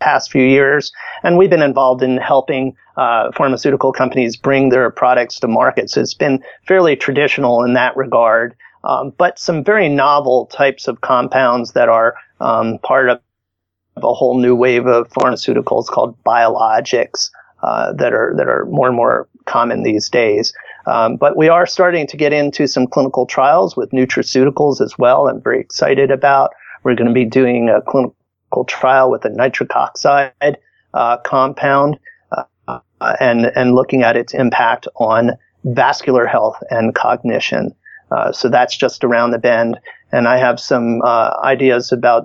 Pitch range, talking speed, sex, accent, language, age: 120-140 Hz, 165 wpm, male, American, English, 30-49